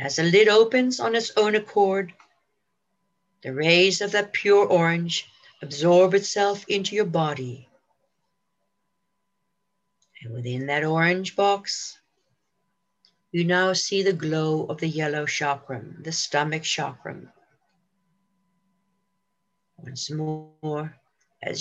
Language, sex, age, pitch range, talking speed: English, female, 60-79, 150-195 Hz, 110 wpm